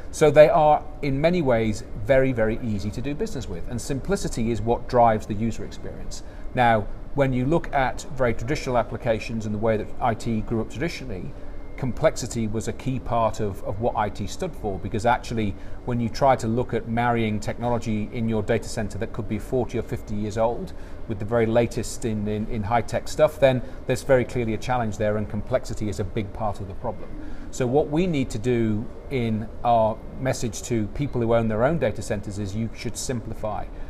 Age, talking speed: 40-59, 205 wpm